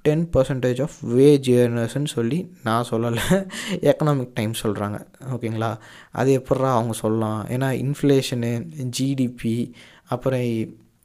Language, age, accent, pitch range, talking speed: Tamil, 20-39, native, 115-145 Hz, 105 wpm